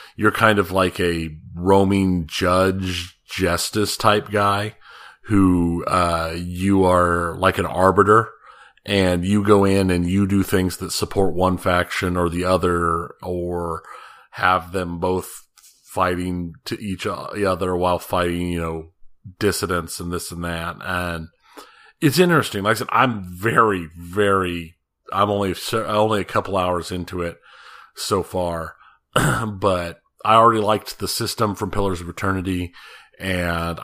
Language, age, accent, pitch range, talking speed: English, 40-59, American, 90-100 Hz, 140 wpm